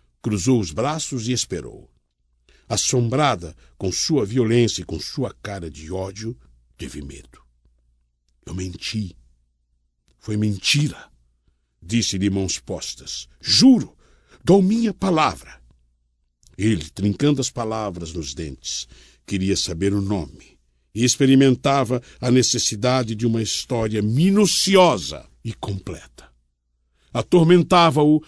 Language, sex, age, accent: Portuguese, male, 60-79, Brazilian